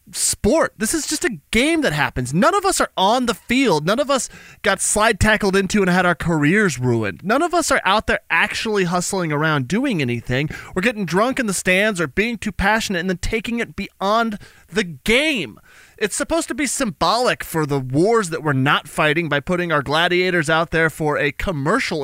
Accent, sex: American, male